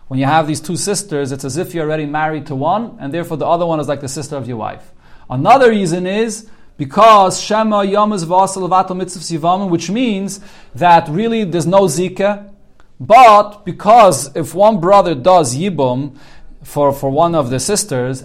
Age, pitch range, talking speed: 40-59, 145-195 Hz, 180 wpm